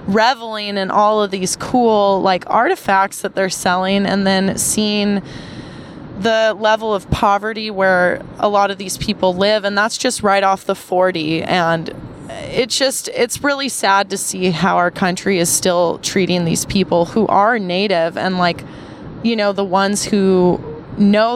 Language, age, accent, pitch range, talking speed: English, 20-39, American, 185-215 Hz, 165 wpm